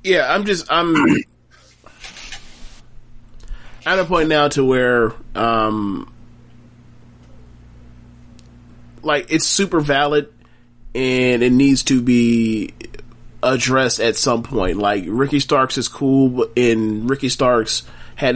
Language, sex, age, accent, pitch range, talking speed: English, male, 30-49, American, 115-145 Hz, 110 wpm